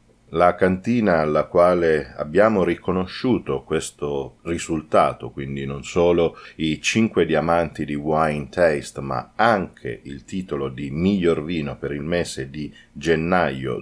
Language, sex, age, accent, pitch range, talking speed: Italian, male, 40-59, native, 75-90 Hz, 125 wpm